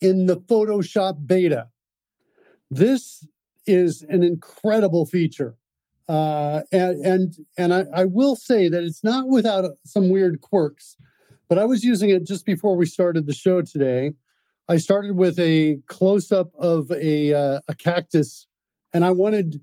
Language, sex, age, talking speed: English, male, 50-69, 155 wpm